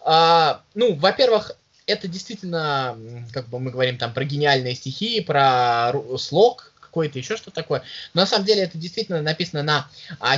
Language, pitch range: Russian, 140-190 Hz